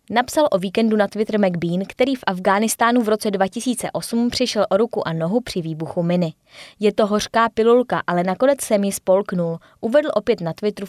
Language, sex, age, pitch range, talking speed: Czech, female, 20-39, 185-230 Hz, 180 wpm